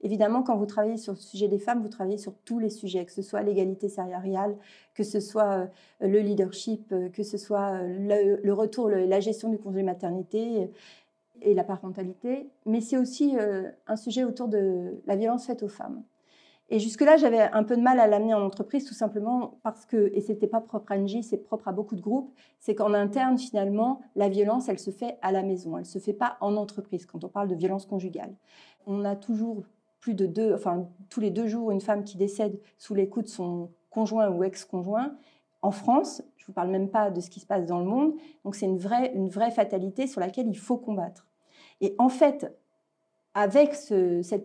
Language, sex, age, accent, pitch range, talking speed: French, female, 40-59, French, 190-230 Hz, 215 wpm